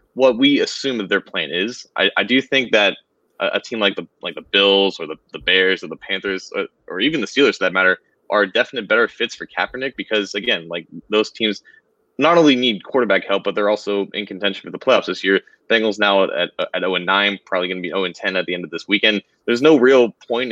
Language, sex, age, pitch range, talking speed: English, male, 20-39, 95-115 Hz, 250 wpm